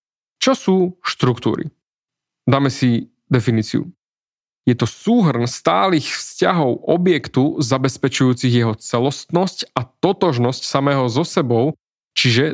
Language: Slovak